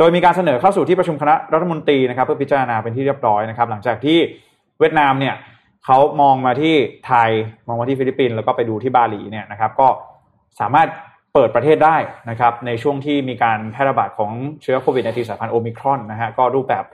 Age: 20-39